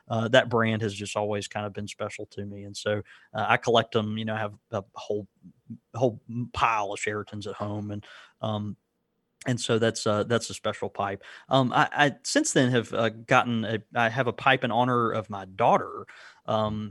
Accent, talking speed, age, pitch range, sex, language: American, 210 wpm, 20-39, 105-125 Hz, male, English